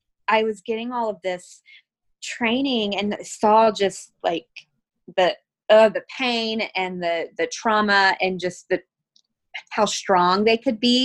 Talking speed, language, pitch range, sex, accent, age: 140 wpm, English, 175-210 Hz, female, American, 20-39